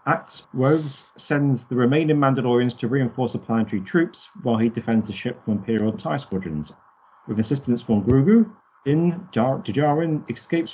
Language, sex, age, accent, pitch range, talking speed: English, male, 40-59, British, 105-135 Hz, 155 wpm